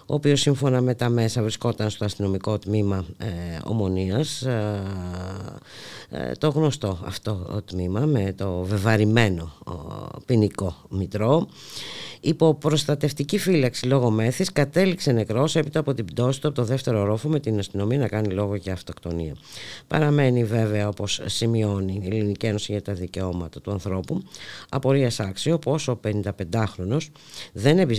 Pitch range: 95-135 Hz